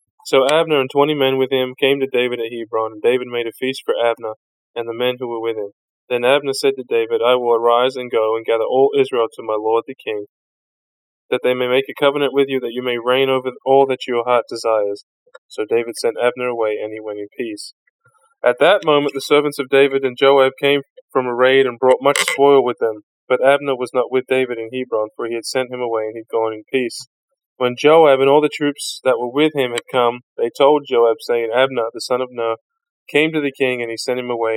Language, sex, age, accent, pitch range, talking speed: English, male, 10-29, American, 120-145 Hz, 245 wpm